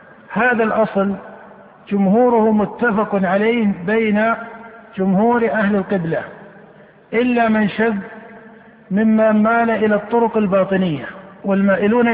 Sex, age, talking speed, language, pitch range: male, 50-69, 90 wpm, Arabic, 195-225 Hz